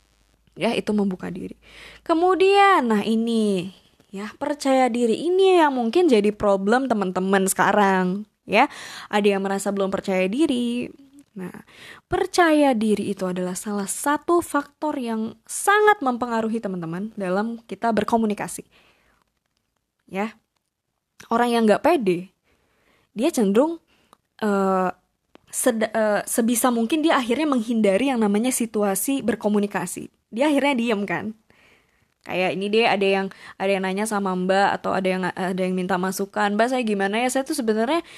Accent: native